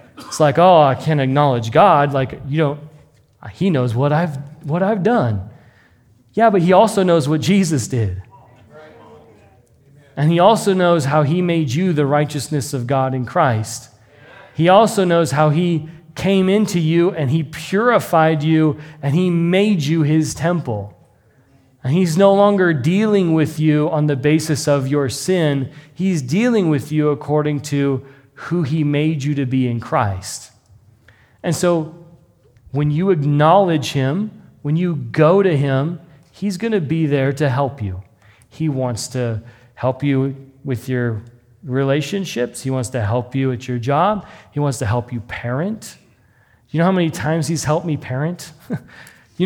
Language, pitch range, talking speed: English, 130-170 Hz, 165 wpm